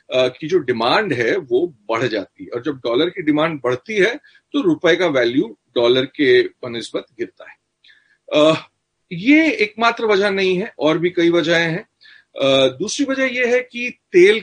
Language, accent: Hindi, native